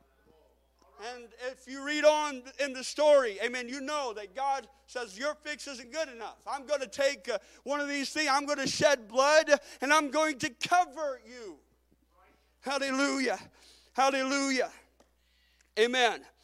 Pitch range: 230-290 Hz